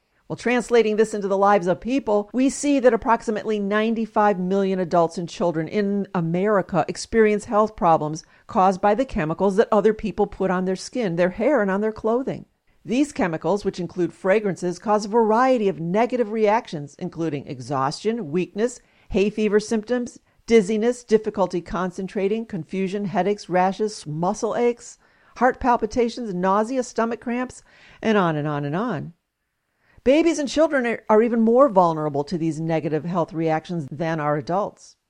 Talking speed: 155 wpm